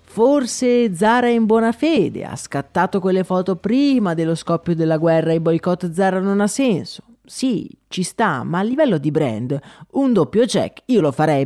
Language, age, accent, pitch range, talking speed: Italian, 30-49, native, 140-195 Hz, 190 wpm